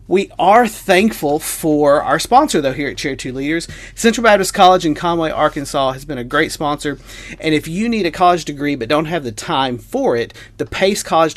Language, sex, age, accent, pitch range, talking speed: English, male, 40-59, American, 135-175 Hz, 210 wpm